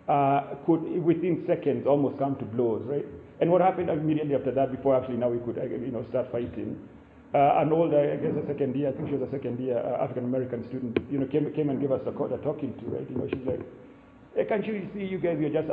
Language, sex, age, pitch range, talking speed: English, male, 40-59, 130-155 Hz, 255 wpm